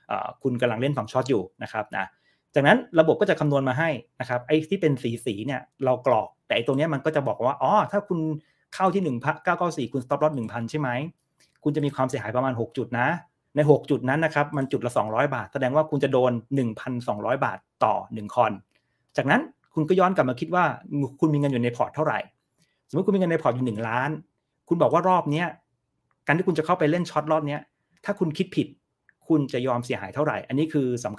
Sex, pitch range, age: male, 130-160 Hz, 30-49